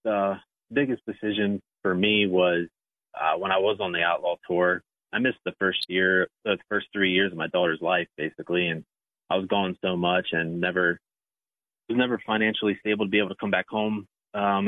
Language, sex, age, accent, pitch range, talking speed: English, male, 30-49, American, 85-100 Hz, 200 wpm